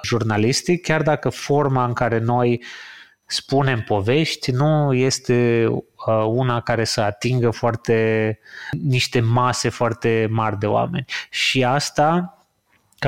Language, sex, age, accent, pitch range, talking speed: Romanian, male, 30-49, native, 115-145 Hz, 115 wpm